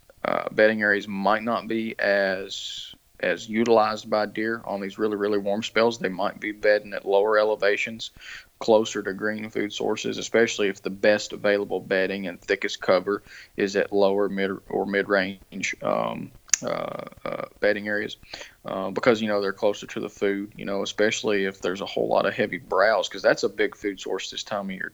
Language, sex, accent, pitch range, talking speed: English, male, American, 100-115 Hz, 195 wpm